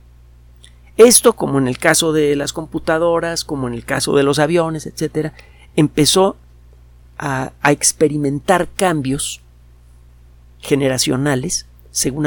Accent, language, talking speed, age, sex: Mexican, Spanish, 110 wpm, 50-69, male